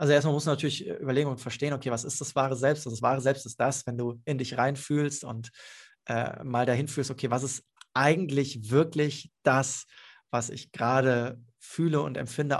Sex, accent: male, German